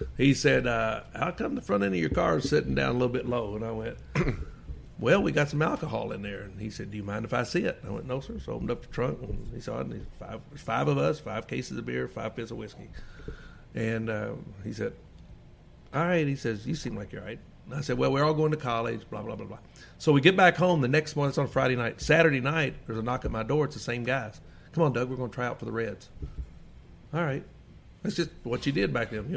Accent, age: American, 50-69